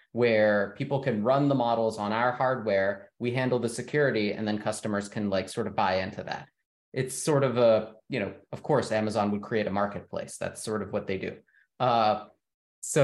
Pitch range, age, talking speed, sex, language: 105-130 Hz, 30-49, 200 wpm, male, English